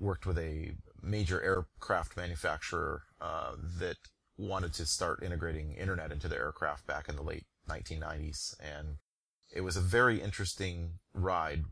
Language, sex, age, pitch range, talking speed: English, male, 30-49, 85-100 Hz, 145 wpm